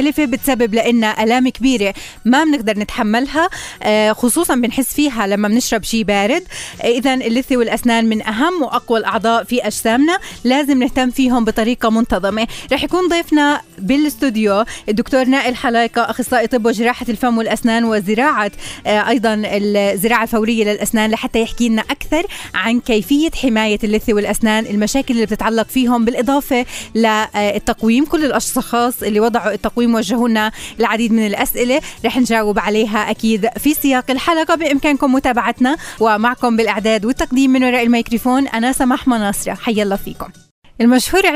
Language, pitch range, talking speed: Arabic, 210-255 Hz, 130 wpm